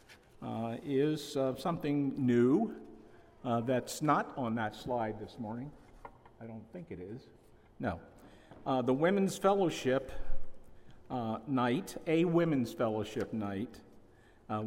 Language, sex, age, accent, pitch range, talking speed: English, male, 50-69, American, 105-135 Hz, 125 wpm